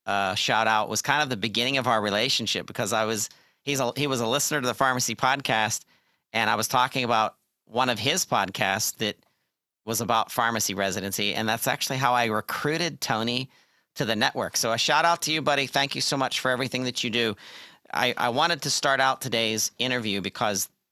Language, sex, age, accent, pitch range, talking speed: English, male, 40-59, American, 110-130 Hz, 215 wpm